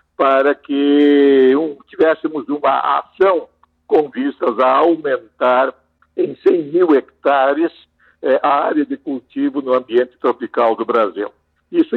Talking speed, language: 115 wpm, Portuguese